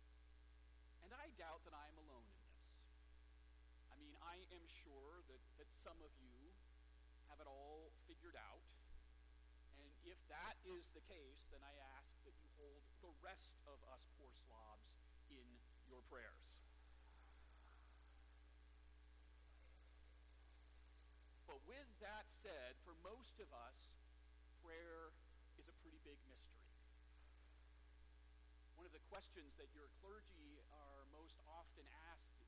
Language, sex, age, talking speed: English, male, 50-69, 125 wpm